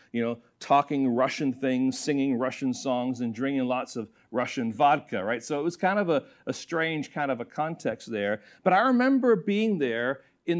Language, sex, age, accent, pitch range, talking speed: English, male, 40-59, American, 135-195 Hz, 190 wpm